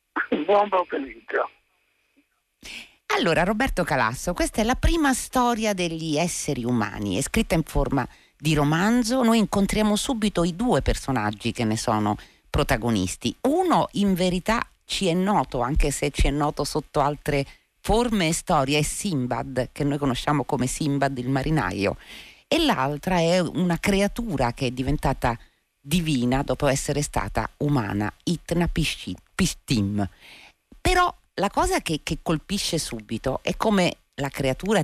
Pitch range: 125-195 Hz